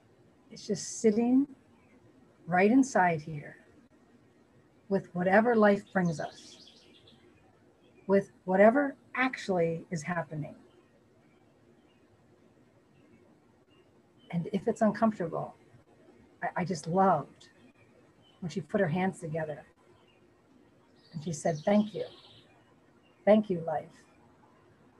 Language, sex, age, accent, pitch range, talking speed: English, female, 50-69, American, 165-210 Hz, 90 wpm